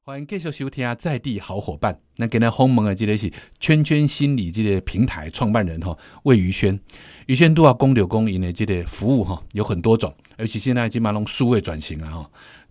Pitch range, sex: 100-135 Hz, male